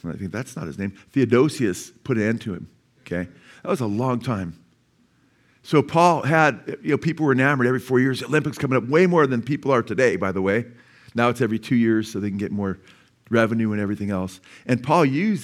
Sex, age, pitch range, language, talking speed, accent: male, 50-69, 110-135 Hz, English, 225 wpm, American